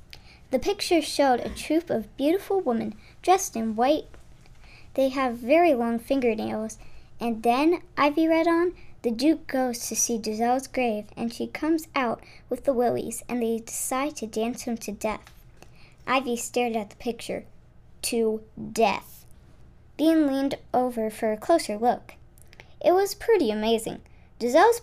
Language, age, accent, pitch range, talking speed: English, 10-29, American, 220-290 Hz, 150 wpm